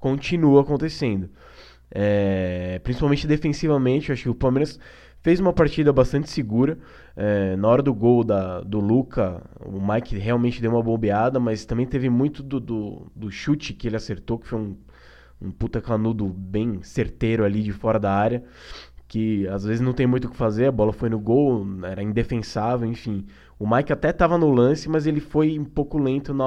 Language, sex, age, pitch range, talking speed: Portuguese, male, 20-39, 105-135 Hz, 190 wpm